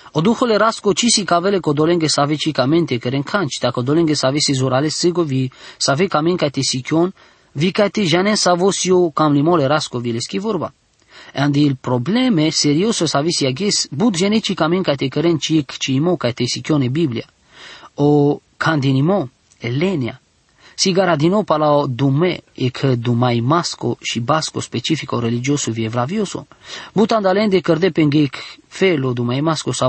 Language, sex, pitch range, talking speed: English, male, 135-180 Hz, 200 wpm